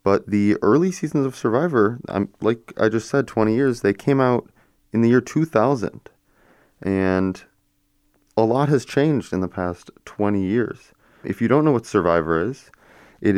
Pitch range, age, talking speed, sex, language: 90-105 Hz, 30-49, 165 wpm, male, English